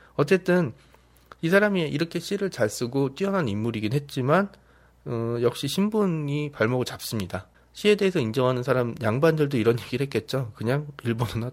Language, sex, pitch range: Korean, male, 115-170 Hz